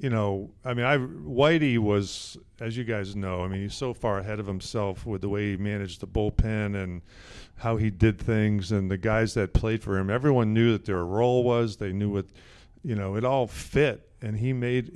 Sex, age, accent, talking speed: male, 50-69, American, 220 wpm